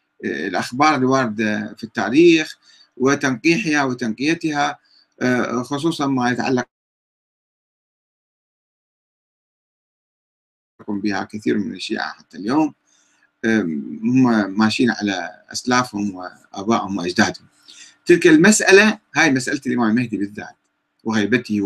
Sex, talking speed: male, 80 wpm